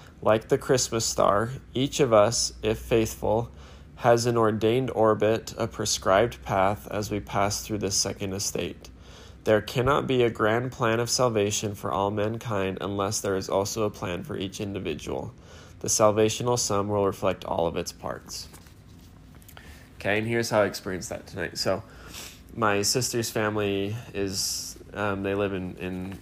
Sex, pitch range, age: male, 95-110 Hz, 20-39